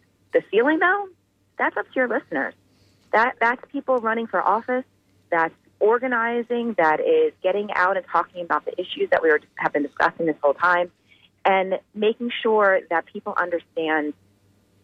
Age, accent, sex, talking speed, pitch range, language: 30-49, American, female, 160 wpm, 145-190 Hz, English